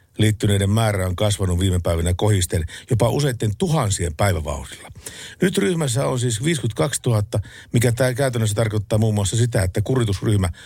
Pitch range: 95-125 Hz